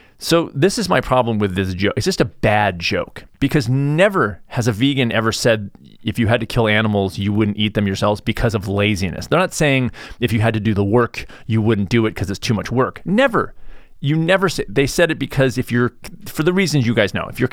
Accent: American